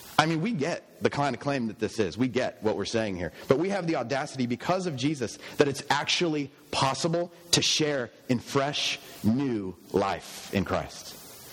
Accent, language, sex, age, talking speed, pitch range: American, English, male, 30-49, 195 wpm, 120-155 Hz